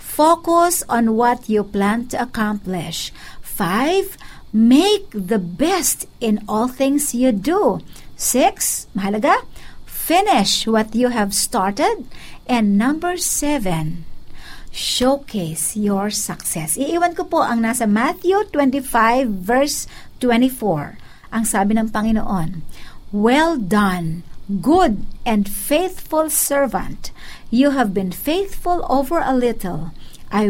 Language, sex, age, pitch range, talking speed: Filipino, female, 50-69, 200-265 Hz, 110 wpm